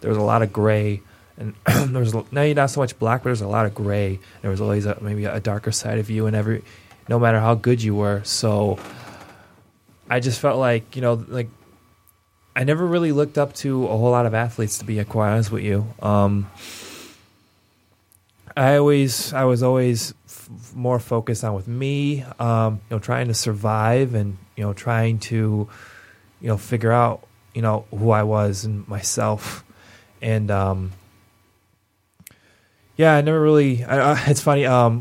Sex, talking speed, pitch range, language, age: male, 195 wpm, 105-125 Hz, English, 20-39